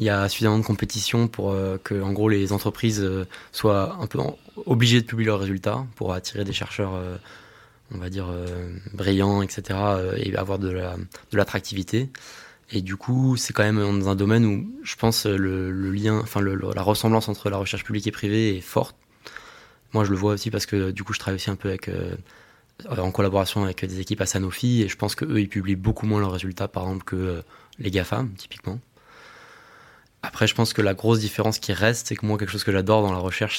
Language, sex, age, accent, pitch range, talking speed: French, male, 20-39, French, 95-110 Hz, 225 wpm